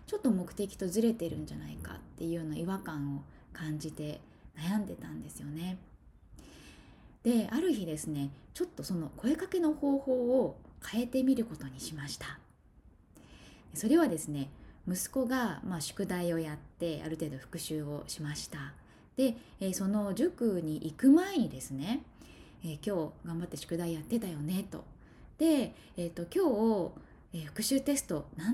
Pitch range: 155-235 Hz